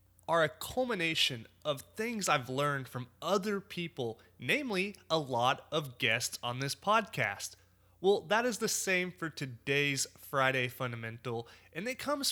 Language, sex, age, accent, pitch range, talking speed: English, male, 30-49, American, 120-185 Hz, 145 wpm